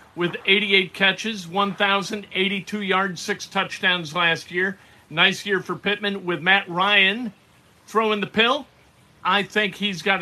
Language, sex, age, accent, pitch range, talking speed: English, male, 50-69, American, 165-210 Hz, 135 wpm